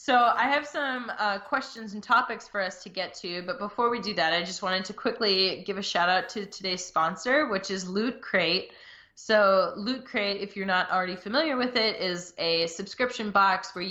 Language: English